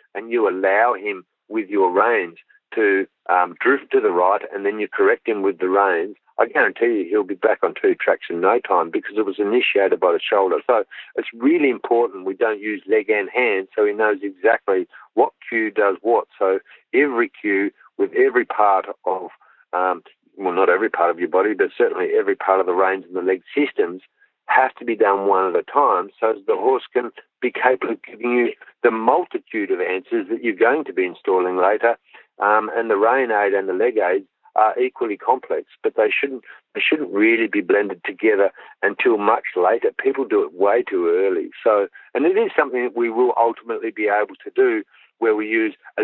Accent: Australian